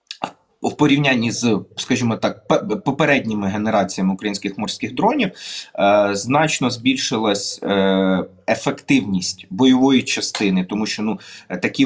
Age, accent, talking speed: 30-49, native, 100 wpm